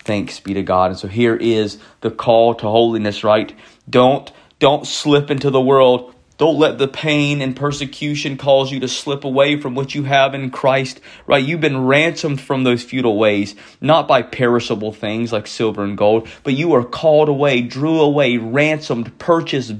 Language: English